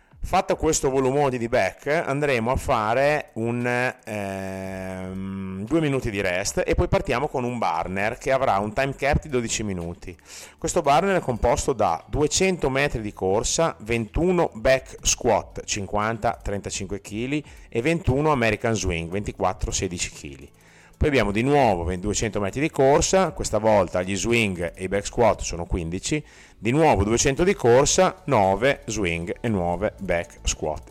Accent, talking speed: native, 150 wpm